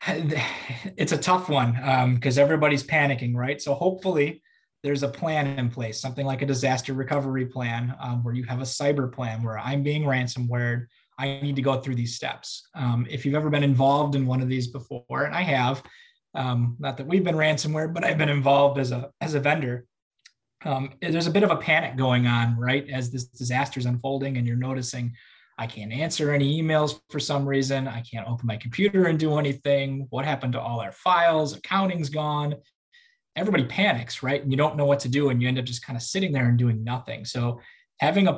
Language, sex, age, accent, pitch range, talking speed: English, male, 20-39, American, 125-155 Hz, 215 wpm